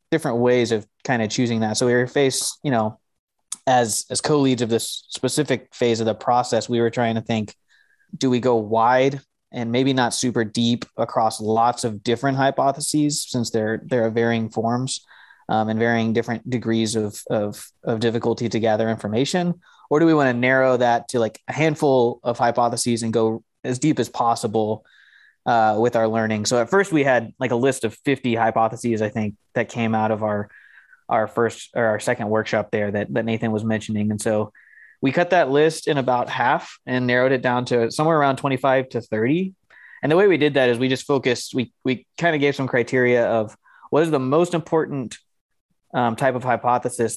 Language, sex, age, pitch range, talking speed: English, male, 20-39, 115-130 Hz, 200 wpm